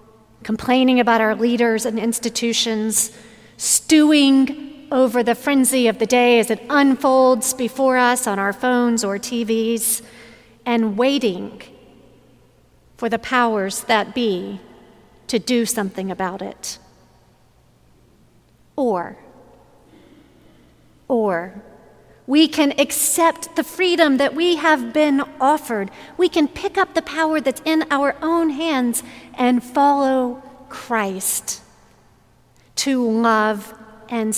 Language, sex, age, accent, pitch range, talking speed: English, female, 40-59, American, 215-280 Hz, 110 wpm